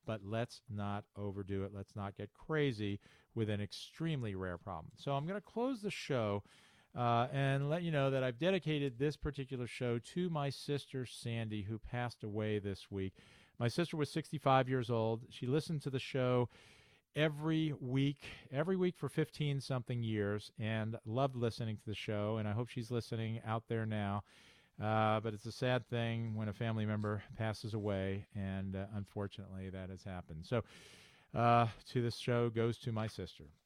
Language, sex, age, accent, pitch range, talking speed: English, male, 40-59, American, 110-140 Hz, 180 wpm